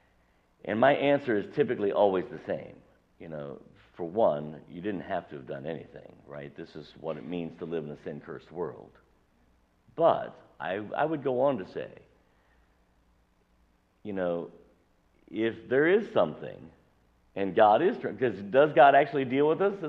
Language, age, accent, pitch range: English, 60-79, American, 85-140 Hz